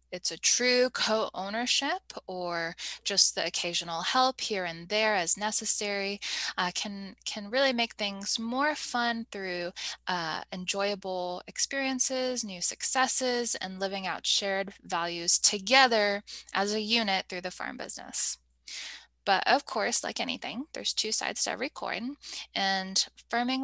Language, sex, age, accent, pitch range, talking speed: English, female, 10-29, American, 190-250 Hz, 135 wpm